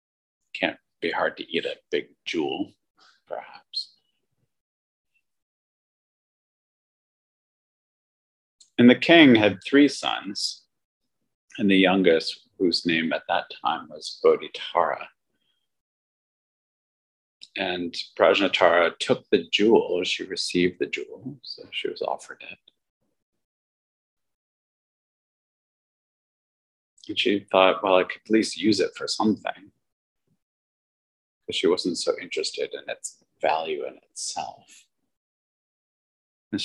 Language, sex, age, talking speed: English, male, 50-69, 100 wpm